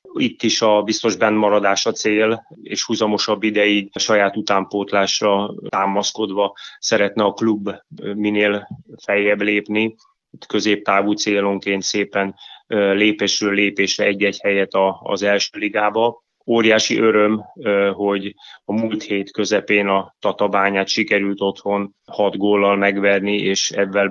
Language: Hungarian